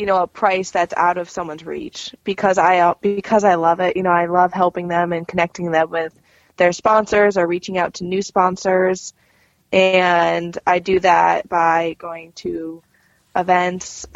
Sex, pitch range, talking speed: female, 165-200 Hz, 175 wpm